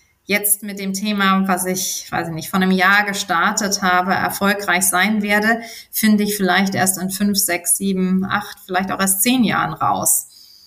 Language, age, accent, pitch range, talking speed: German, 30-49, German, 185-205 Hz, 180 wpm